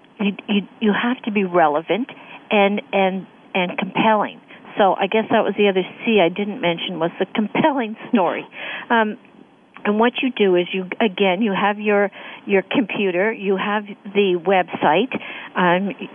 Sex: female